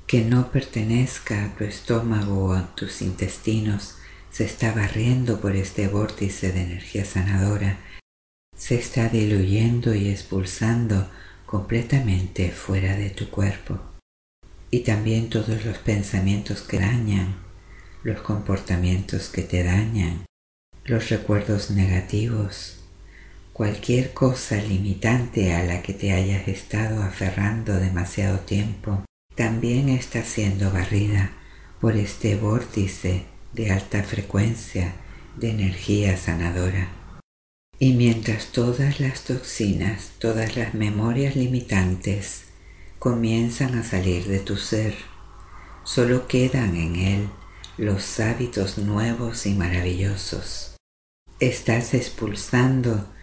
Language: Spanish